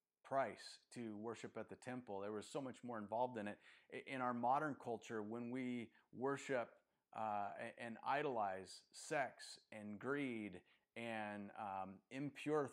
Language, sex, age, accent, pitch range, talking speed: English, male, 30-49, American, 105-125 Hz, 140 wpm